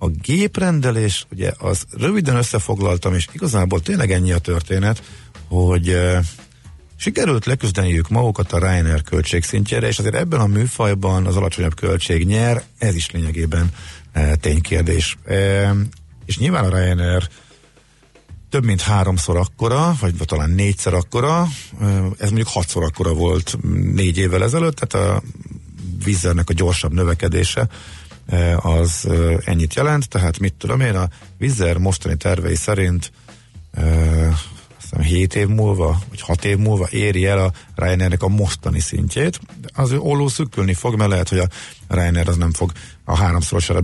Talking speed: 135 wpm